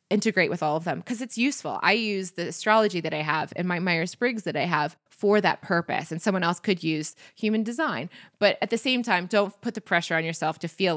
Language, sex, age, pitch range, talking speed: English, female, 20-39, 170-225 Hz, 245 wpm